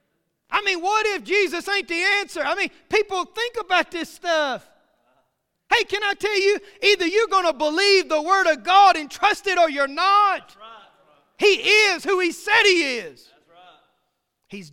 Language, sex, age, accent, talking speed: English, male, 40-59, American, 175 wpm